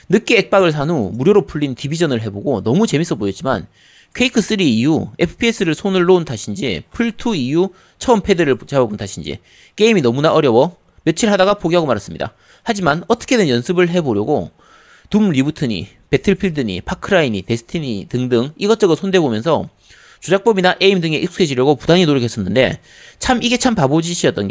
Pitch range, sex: 130-210 Hz, male